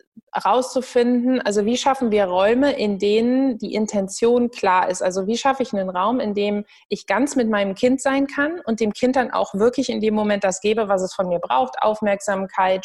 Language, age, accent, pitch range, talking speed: German, 20-39, German, 205-250 Hz, 205 wpm